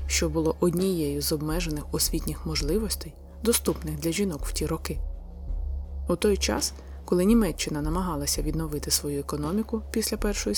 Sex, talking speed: female, 135 wpm